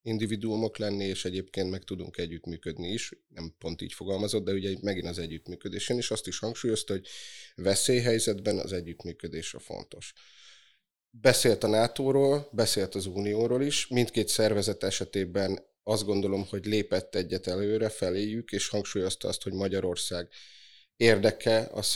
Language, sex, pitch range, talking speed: Hungarian, male, 95-110 Hz, 140 wpm